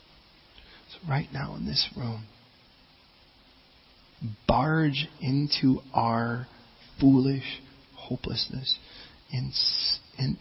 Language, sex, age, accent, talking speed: English, male, 40-59, American, 70 wpm